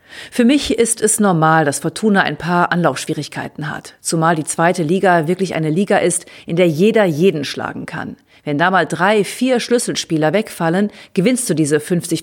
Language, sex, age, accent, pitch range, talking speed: German, female, 40-59, German, 155-195 Hz, 170 wpm